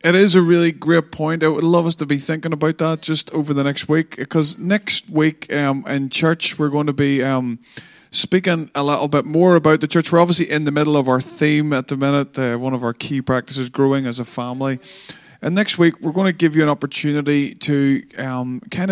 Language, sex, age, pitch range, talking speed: English, male, 20-39, 125-150 Hz, 230 wpm